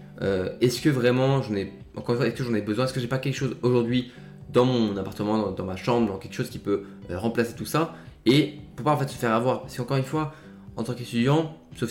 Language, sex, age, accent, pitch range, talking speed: French, male, 20-39, French, 105-125 Hz, 240 wpm